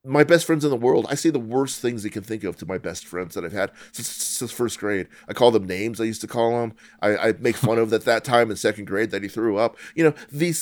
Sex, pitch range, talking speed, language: male, 100-135 Hz, 305 wpm, English